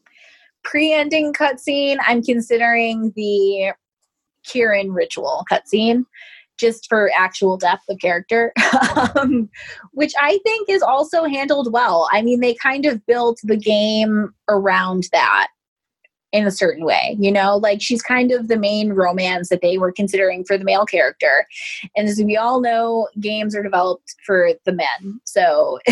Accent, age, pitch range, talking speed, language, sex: American, 20-39, 200-255 Hz, 150 wpm, English, female